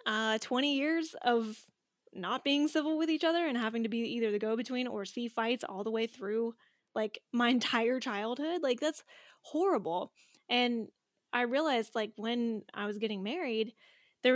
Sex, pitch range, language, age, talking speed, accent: female, 215-260 Hz, English, 10-29, 170 wpm, American